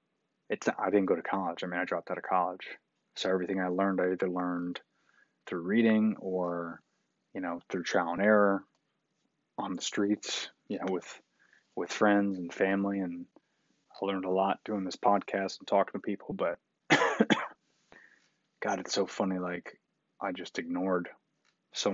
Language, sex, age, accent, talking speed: English, male, 20-39, American, 170 wpm